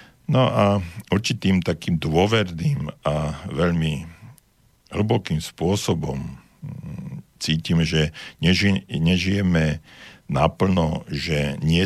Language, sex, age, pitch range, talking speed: Slovak, male, 60-79, 75-95 Hz, 80 wpm